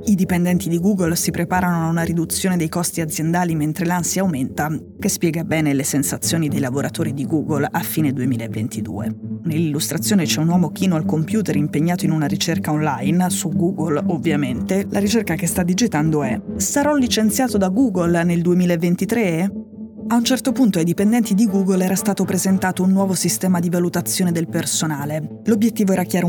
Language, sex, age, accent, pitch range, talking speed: Italian, female, 20-39, native, 160-195 Hz, 170 wpm